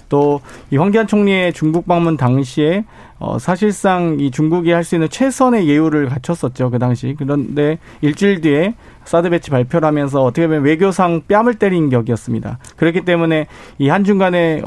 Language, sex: Korean, male